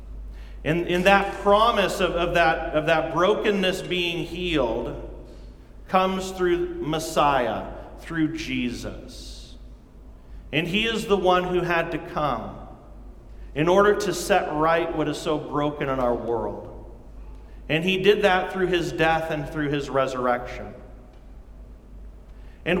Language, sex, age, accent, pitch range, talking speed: English, male, 40-59, American, 140-200 Hz, 130 wpm